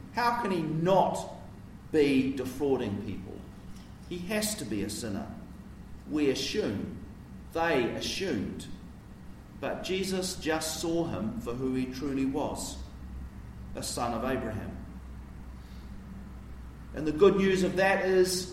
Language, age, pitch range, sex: English, 50-69, 100-155 Hz, male